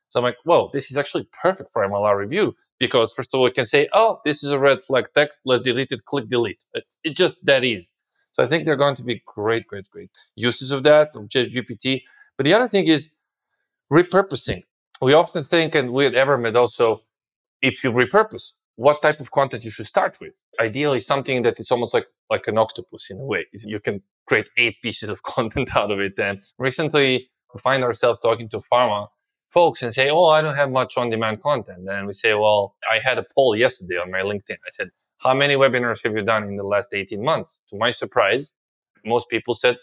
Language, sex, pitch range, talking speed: English, male, 120-155 Hz, 220 wpm